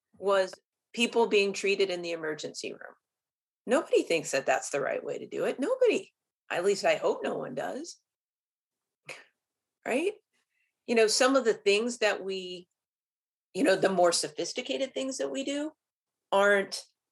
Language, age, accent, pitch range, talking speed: English, 40-59, American, 170-240 Hz, 160 wpm